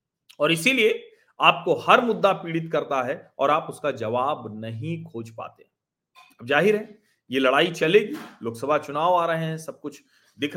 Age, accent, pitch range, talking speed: 40-59, native, 150-235 Hz, 165 wpm